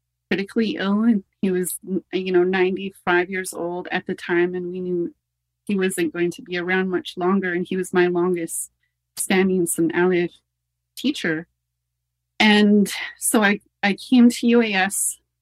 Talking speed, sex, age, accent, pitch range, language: 155 wpm, female, 30-49, American, 175-195 Hz, English